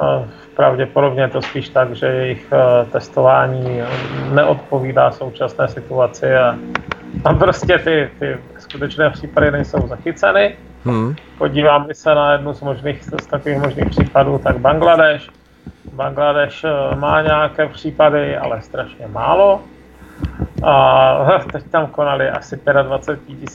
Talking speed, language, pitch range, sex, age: 115 wpm, Czech, 130-155 Hz, male, 30-49